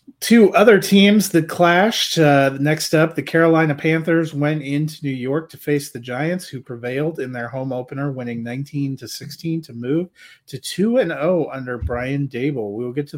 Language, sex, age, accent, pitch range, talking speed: English, male, 30-49, American, 120-155 Hz, 190 wpm